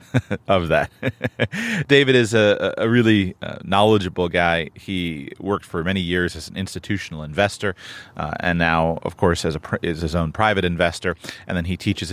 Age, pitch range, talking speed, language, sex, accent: 30-49, 90-115 Hz, 170 wpm, English, male, American